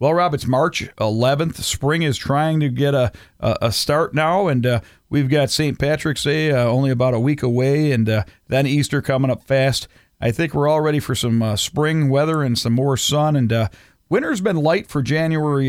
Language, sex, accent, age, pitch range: Japanese, male, American, 50-69, 115-140 Hz